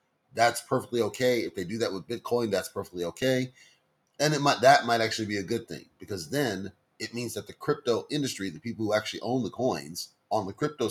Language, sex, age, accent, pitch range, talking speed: English, male, 30-49, American, 100-125 Hz, 220 wpm